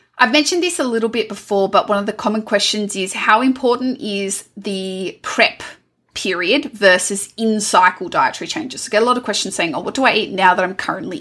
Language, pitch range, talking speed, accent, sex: English, 185-235 Hz, 215 wpm, Australian, female